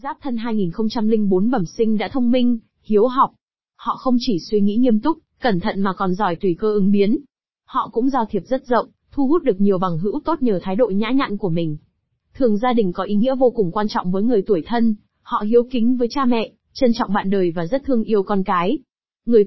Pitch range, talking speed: 200-255 Hz, 235 wpm